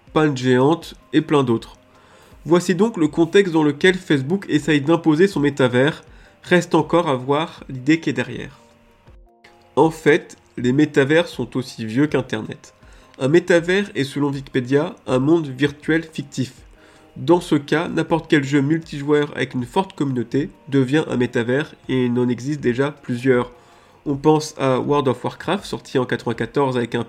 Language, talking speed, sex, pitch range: French, 155 wpm, male, 125-160 Hz